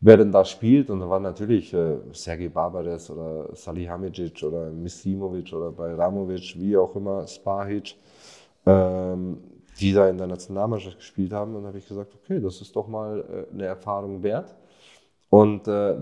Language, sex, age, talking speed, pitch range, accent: German, male, 30-49, 170 wpm, 95-120 Hz, German